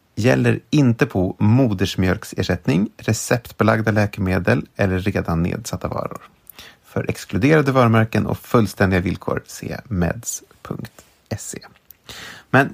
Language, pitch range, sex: English, 95-115 Hz, male